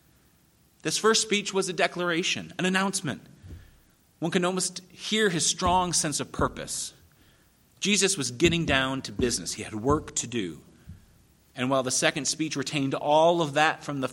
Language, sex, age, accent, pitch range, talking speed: English, male, 40-59, American, 125-185 Hz, 165 wpm